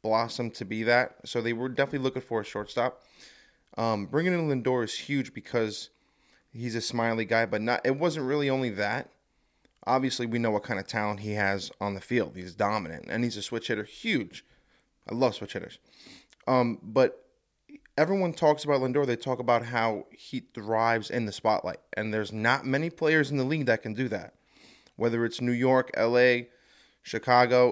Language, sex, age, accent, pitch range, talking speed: English, male, 20-39, American, 115-140 Hz, 190 wpm